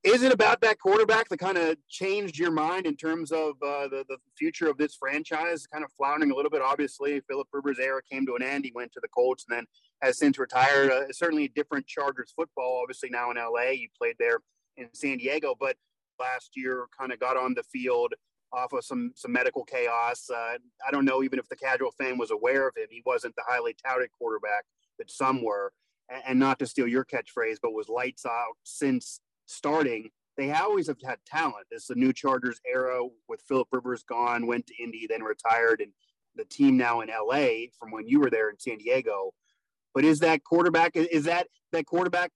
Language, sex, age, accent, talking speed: English, male, 30-49, American, 220 wpm